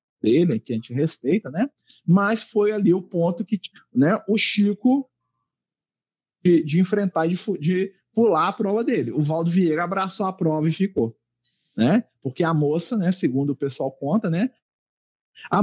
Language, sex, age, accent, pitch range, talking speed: Portuguese, male, 40-59, Brazilian, 155-230 Hz, 175 wpm